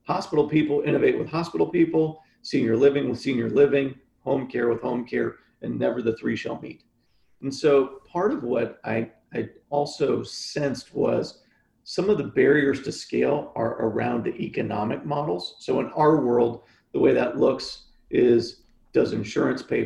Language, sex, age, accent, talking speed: English, male, 40-59, American, 165 wpm